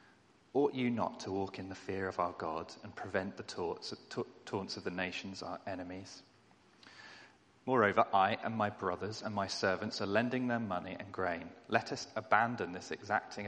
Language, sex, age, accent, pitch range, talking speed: English, male, 30-49, British, 95-115 Hz, 175 wpm